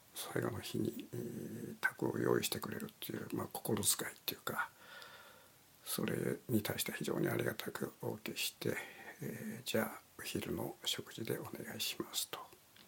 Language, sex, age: Japanese, male, 60-79